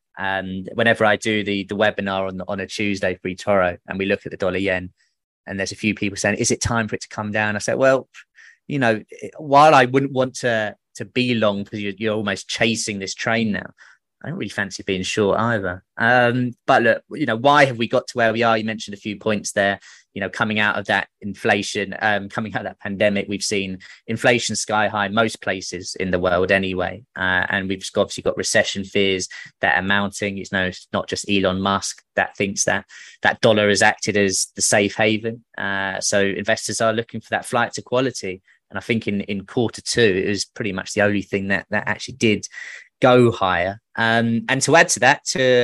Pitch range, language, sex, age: 100-115 Hz, English, male, 20-39